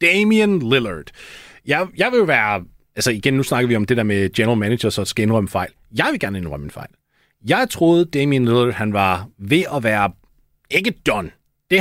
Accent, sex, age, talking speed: native, male, 30-49, 200 wpm